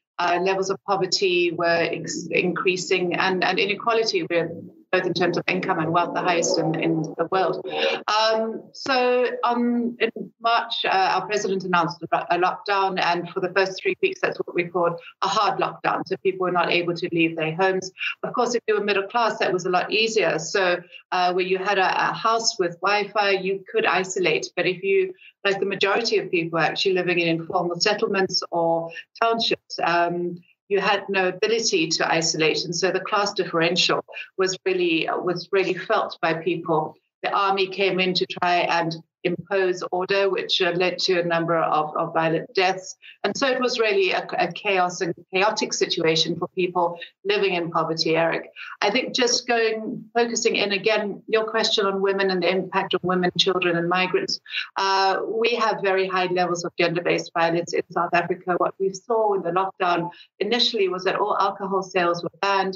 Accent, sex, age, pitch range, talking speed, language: British, female, 30-49, 175-215 Hz, 190 wpm, Swedish